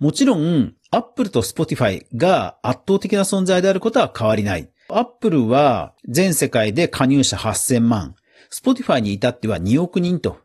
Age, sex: 40-59, male